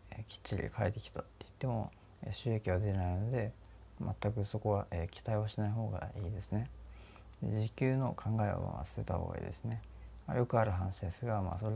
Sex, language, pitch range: male, Japanese, 95-115 Hz